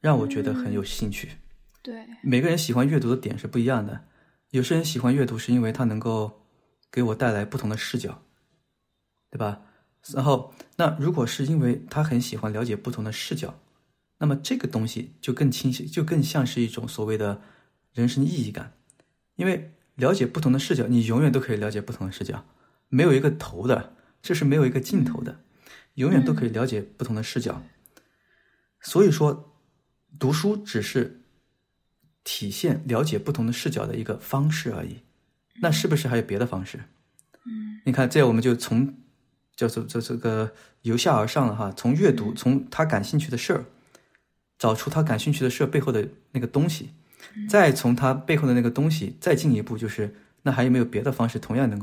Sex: male